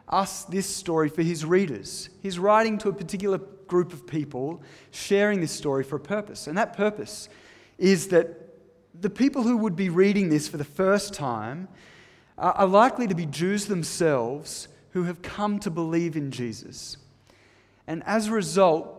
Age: 30-49